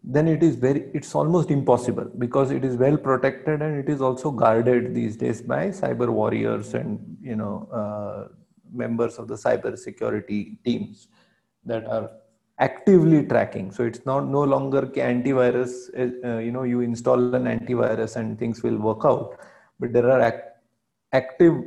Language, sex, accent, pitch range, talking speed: English, male, Indian, 120-145 Hz, 165 wpm